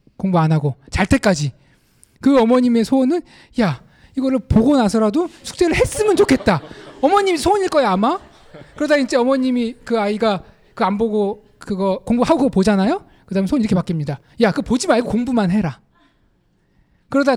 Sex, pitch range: male, 175-265 Hz